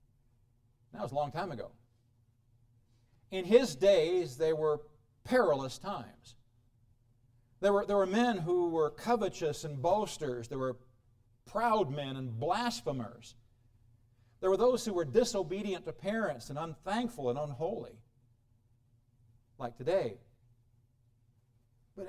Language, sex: English, male